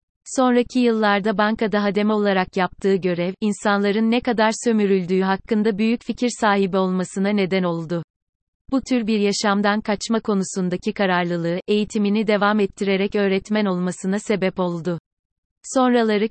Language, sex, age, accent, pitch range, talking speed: Turkish, female, 30-49, native, 190-220 Hz, 120 wpm